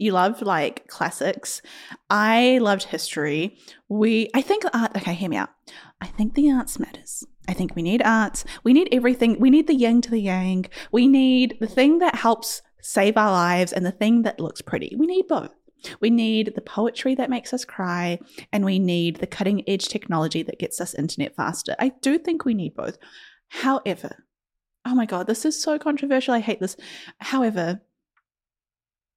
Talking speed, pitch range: 185 wpm, 180-240 Hz